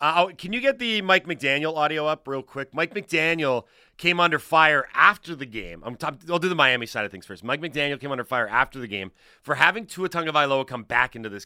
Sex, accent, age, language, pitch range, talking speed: male, American, 30-49, English, 120-165 Hz, 235 wpm